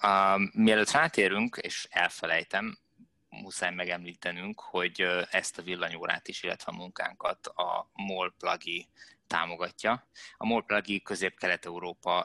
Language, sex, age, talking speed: Hungarian, male, 20-39, 105 wpm